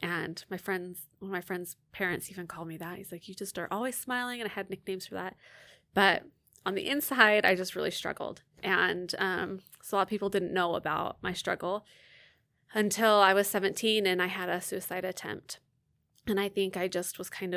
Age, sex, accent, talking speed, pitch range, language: 20-39, female, American, 210 wpm, 180-200 Hz, English